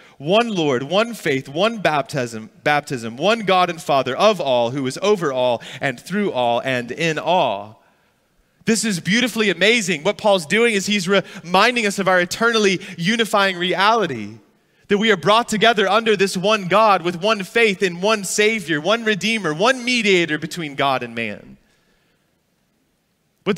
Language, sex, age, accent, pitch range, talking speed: English, male, 30-49, American, 165-215 Hz, 165 wpm